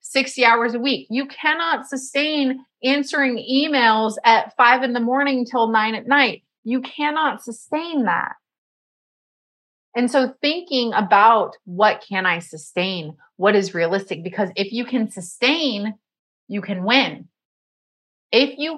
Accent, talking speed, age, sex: American, 135 wpm, 30-49, female